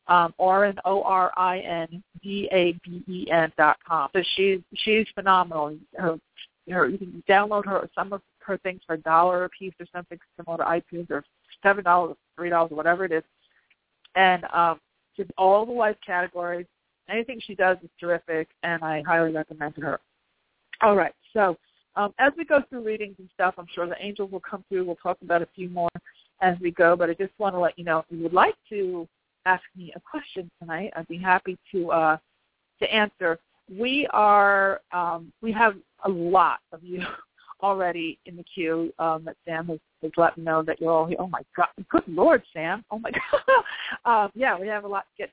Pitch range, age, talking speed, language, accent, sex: 170-200 Hz, 50-69, 195 wpm, English, American, female